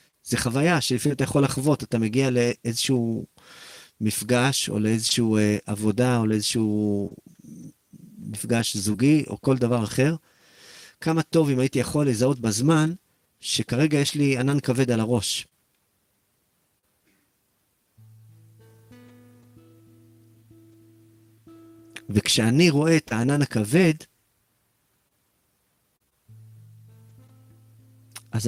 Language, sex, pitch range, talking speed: English, male, 110-130 Hz, 85 wpm